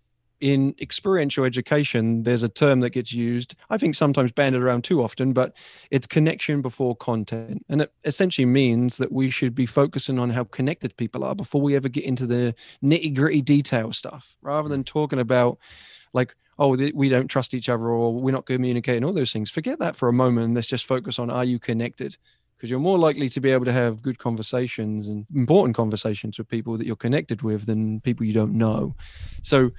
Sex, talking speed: male, 200 wpm